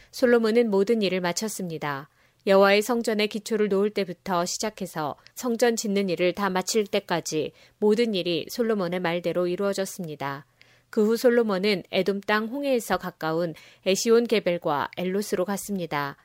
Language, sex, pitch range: Korean, female, 175-220 Hz